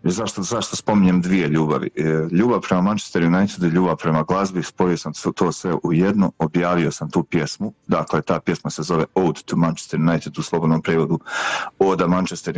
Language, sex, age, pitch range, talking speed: Croatian, male, 40-59, 80-90 Hz, 170 wpm